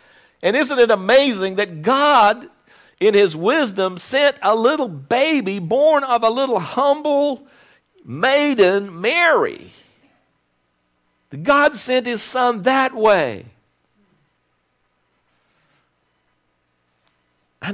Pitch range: 175-240 Hz